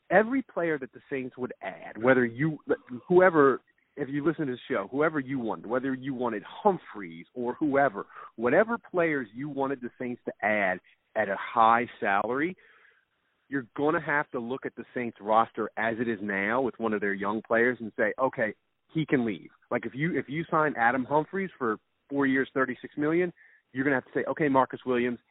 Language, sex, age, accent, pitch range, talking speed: English, male, 30-49, American, 115-155 Hz, 205 wpm